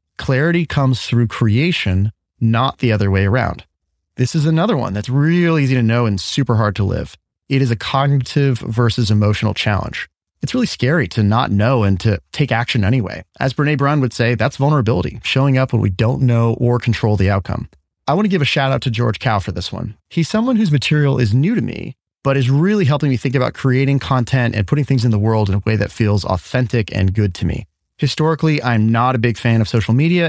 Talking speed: 225 wpm